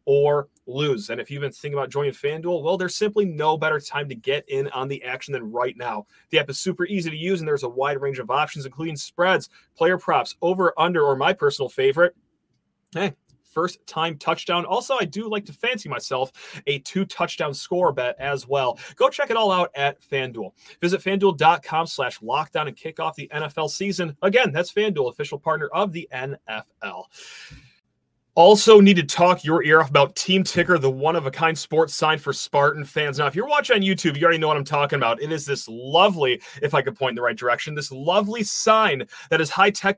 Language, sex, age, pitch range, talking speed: English, male, 30-49, 145-190 Hz, 205 wpm